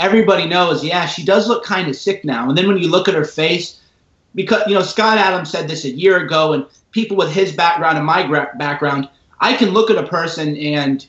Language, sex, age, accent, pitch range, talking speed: English, male, 30-49, American, 145-190 Hz, 235 wpm